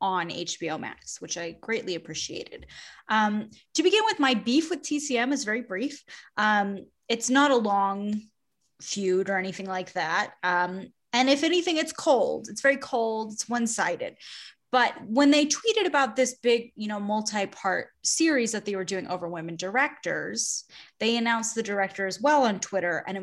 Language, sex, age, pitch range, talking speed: English, female, 20-39, 200-290 Hz, 175 wpm